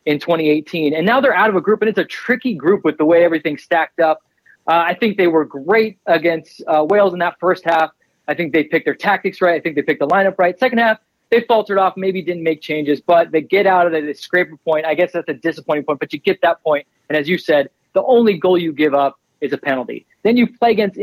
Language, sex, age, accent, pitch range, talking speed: English, male, 20-39, American, 160-210 Hz, 270 wpm